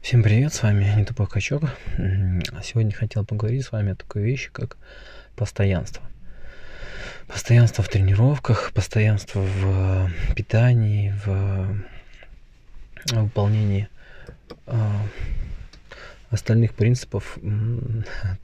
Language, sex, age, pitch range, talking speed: Russian, male, 20-39, 100-120 Hz, 95 wpm